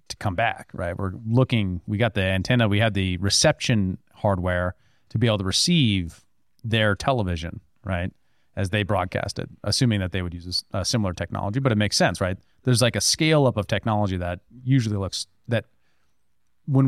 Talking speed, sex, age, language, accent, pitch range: 185 wpm, male, 30-49, English, American, 95-120 Hz